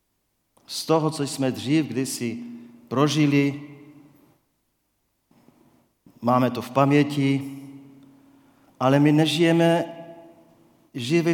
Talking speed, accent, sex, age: 80 wpm, native, male, 40-59